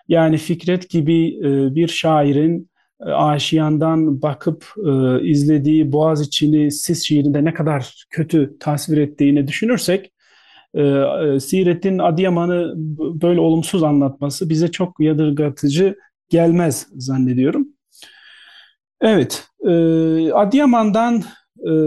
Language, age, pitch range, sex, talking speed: Turkish, 40-59, 145-175 Hz, male, 80 wpm